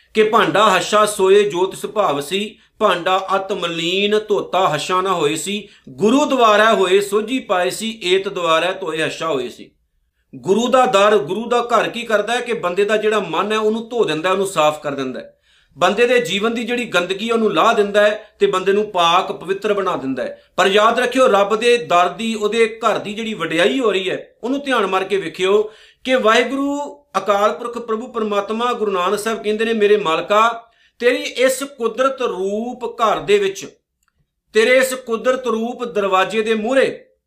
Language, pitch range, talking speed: Punjabi, 190-235 Hz, 180 wpm